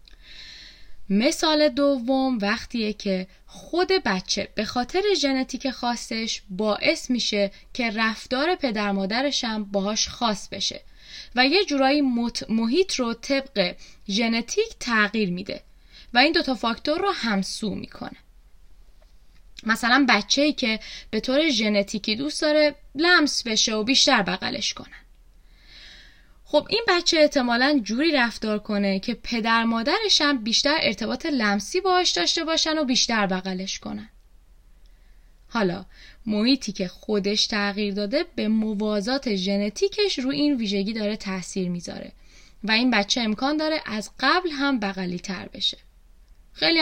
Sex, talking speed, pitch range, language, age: female, 125 wpm, 205-280 Hz, Persian, 10-29